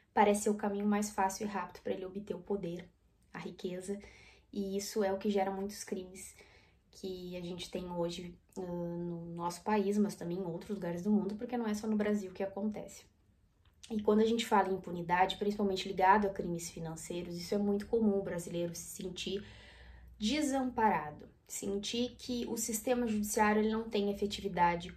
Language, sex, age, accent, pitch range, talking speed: Portuguese, female, 20-39, Brazilian, 175-210 Hz, 180 wpm